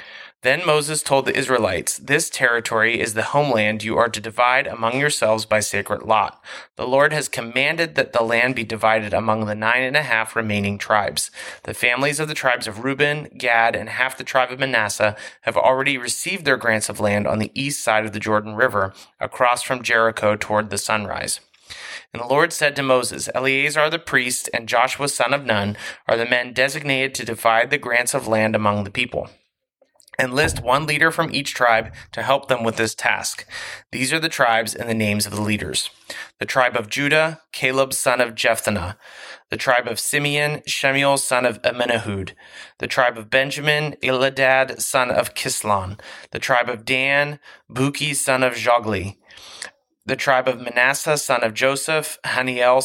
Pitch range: 110-140 Hz